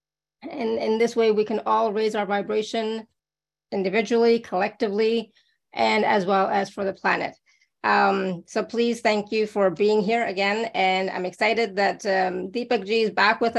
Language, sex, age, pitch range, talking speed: English, female, 30-49, 195-235 Hz, 170 wpm